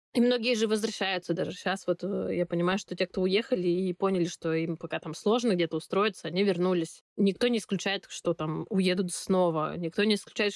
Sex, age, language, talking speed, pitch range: female, 20-39, Russian, 195 wpm, 175-210 Hz